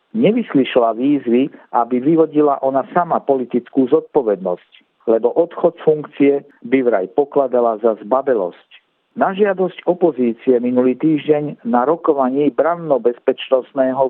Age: 50-69